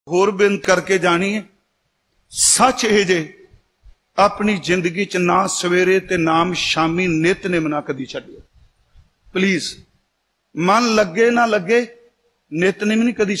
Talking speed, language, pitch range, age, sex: 120 wpm, Punjabi, 200-240 Hz, 50-69, male